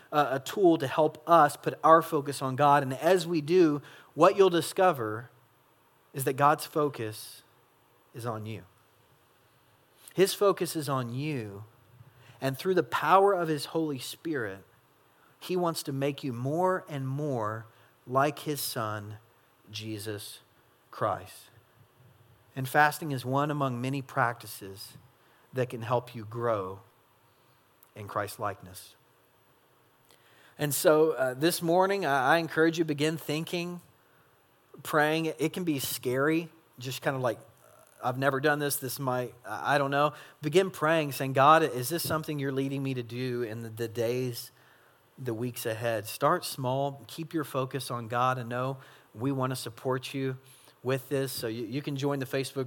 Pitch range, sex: 120-150 Hz, male